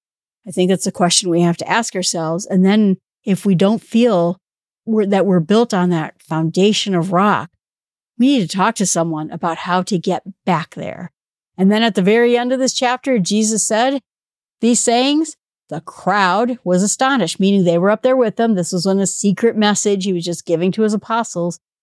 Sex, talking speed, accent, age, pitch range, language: female, 200 wpm, American, 50-69, 175-210 Hz, English